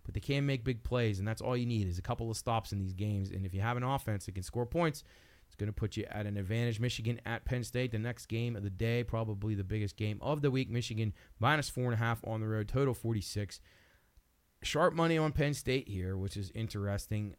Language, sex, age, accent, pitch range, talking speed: English, male, 30-49, American, 100-125 Hz, 245 wpm